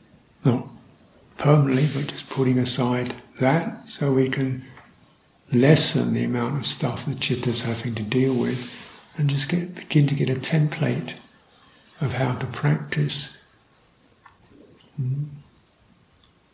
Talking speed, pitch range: 120 wpm, 120-145 Hz